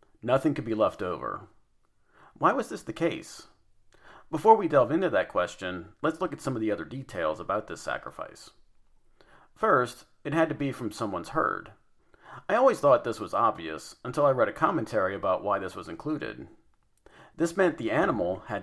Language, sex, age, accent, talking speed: English, male, 40-59, American, 180 wpm